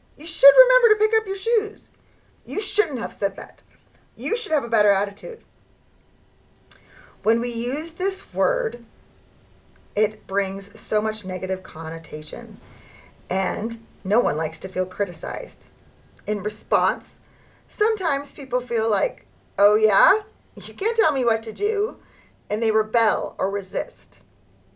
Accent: American